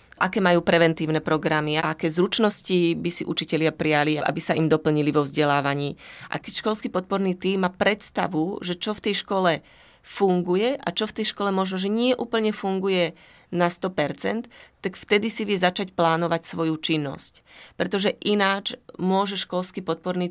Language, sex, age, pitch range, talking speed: Slovak, female, 30-49, 165-195 Hz, 165 wpm